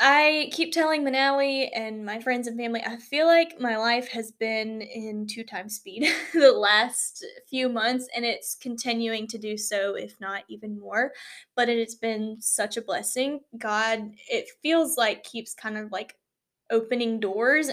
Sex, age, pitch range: female, 10-29, 210-265 Hz